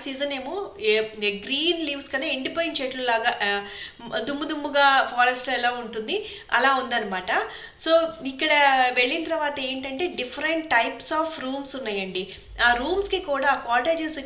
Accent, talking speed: native, 125 wpm